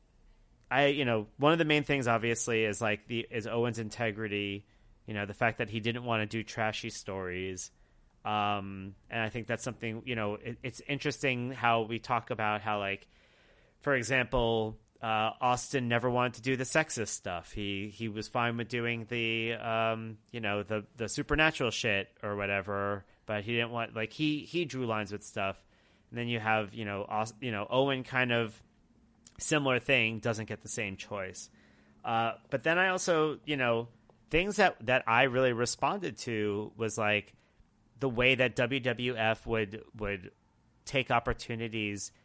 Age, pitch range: 30-49, 105-125 Hz